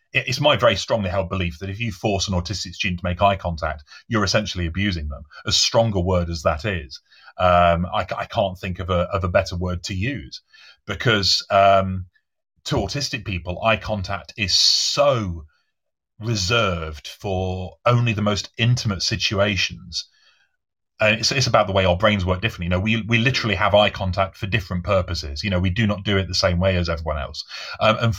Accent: British